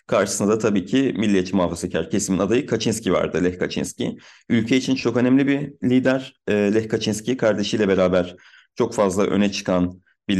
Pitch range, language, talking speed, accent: 105-130 Hz, Turkish, 155 wpm, native